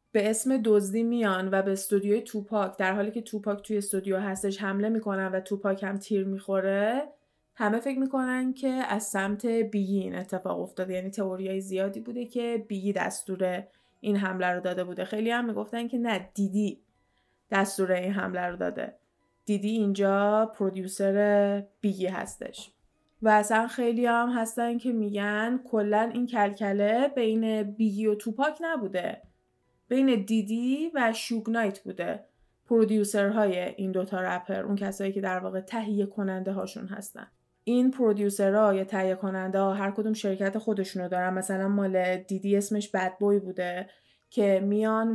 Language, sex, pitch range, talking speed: Persian, female, 195-225 Hz, 155 wpm